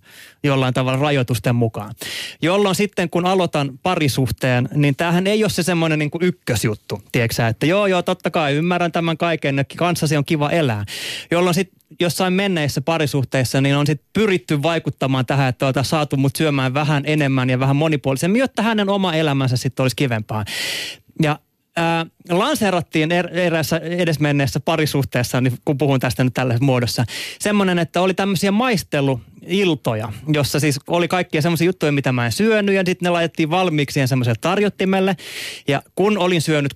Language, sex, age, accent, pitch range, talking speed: Finnish, male, 30-49, native, 140-180 Hz, 165 wpm